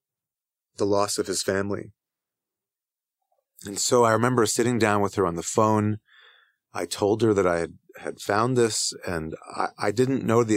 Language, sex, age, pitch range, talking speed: English, male, 30-49, 100-125 Hz, 175 wpm